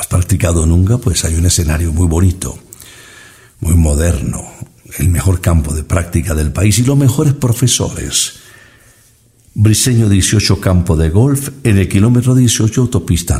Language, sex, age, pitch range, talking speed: Spanish, male, 60-79, 90-125 Hz, 145 wpm